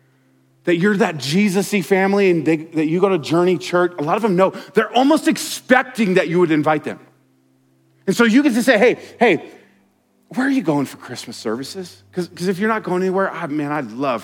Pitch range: 130-190 Hz